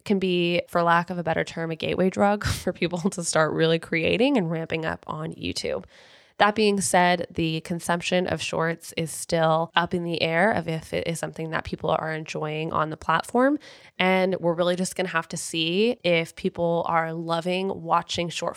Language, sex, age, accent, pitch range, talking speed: English, female, 20-39, American, 165-190 Hz, 195 wpm